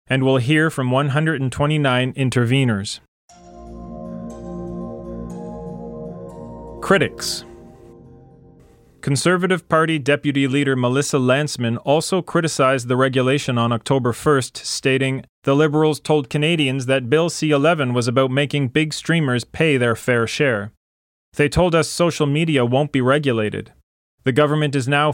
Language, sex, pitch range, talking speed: English, male, 120-150 Hz, 115 wpm